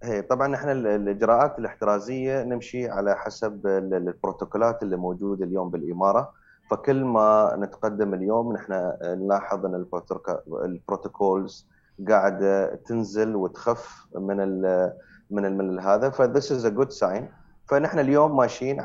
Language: Arabic